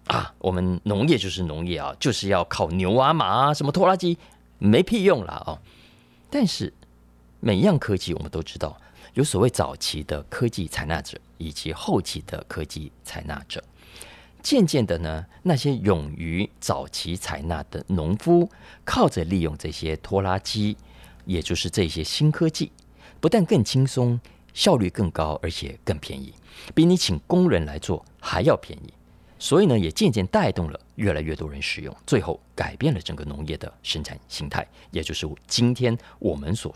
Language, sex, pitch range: Chinese, male, 75-120 Hz